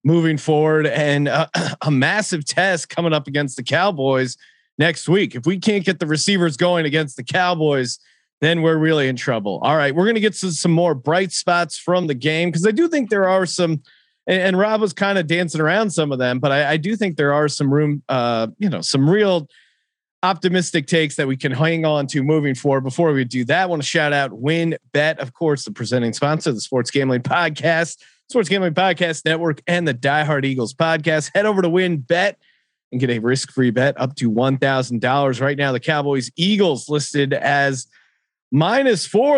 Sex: male